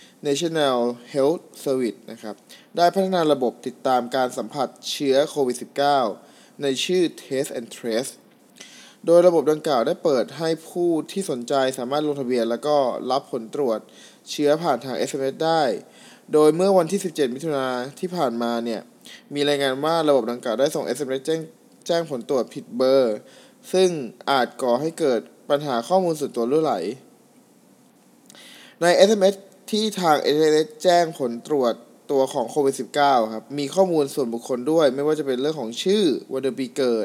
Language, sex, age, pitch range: Thai, male, 20-39, 135-190 Hz